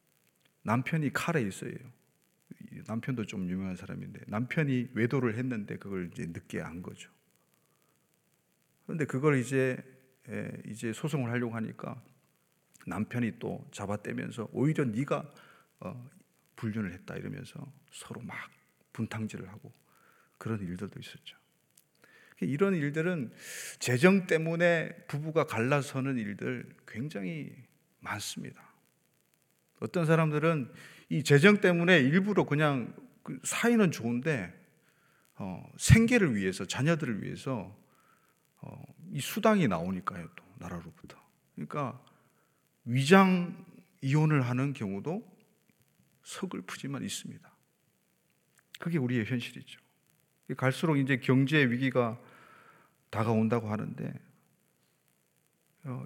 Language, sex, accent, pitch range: Korean, male, native, 120-170 Hz